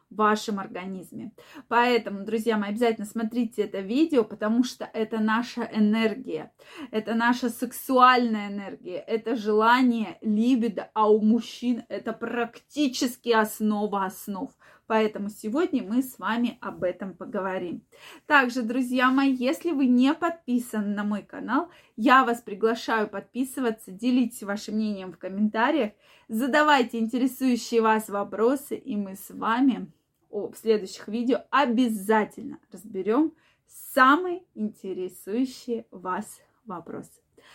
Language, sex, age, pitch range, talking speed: Russian, female, 20-39, 220-280 Hz, 115 wpm